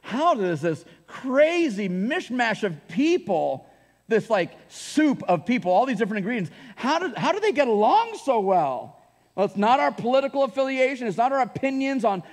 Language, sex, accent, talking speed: English, male, American, 175 wpm